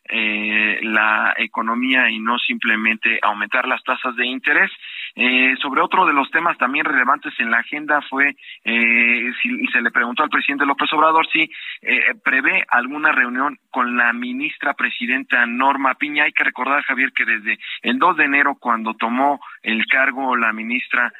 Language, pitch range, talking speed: Spanish, 115-155 Hz, 175 wpm